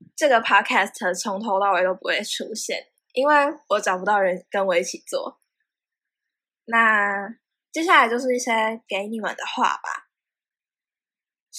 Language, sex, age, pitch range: Chinese, female, 10-29, 200-260 Hz